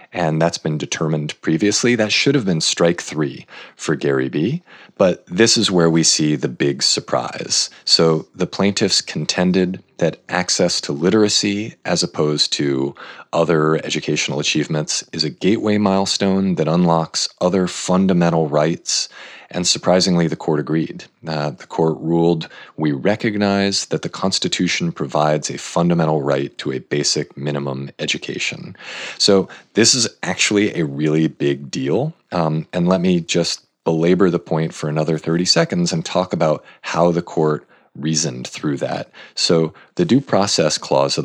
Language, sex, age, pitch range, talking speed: English, male, 40-59, 75-95 Hz, 150 wpm